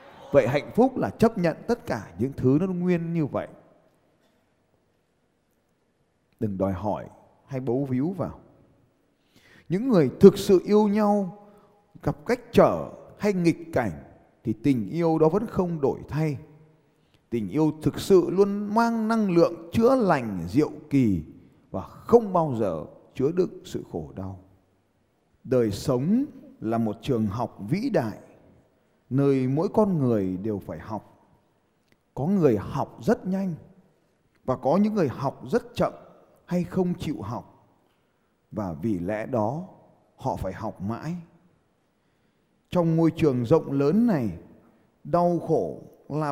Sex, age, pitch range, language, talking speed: male, 20-39, 115-185 Hz, Vietnamese, 145 wpm